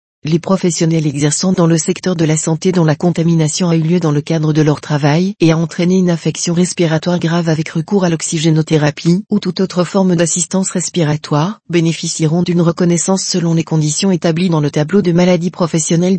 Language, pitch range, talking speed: French, 160-180 Hz, 190 wpm